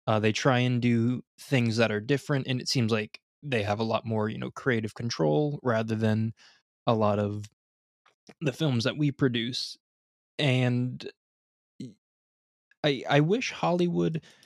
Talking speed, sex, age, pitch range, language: 155 wpm, male, 20-39, 110-140 Hz, English